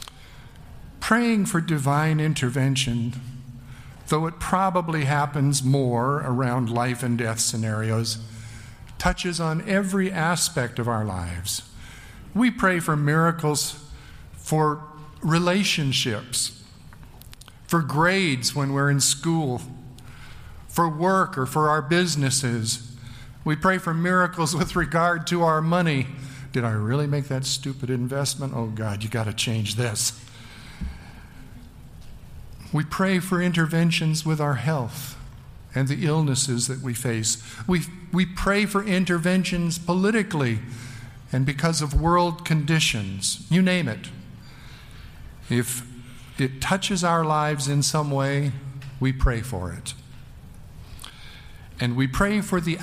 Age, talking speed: 50-69, 120 wpm